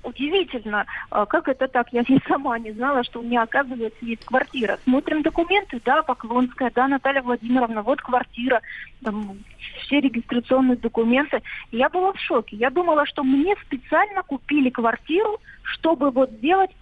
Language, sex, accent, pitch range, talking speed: Russian, female, native, 240-295 Hz, 150 wpm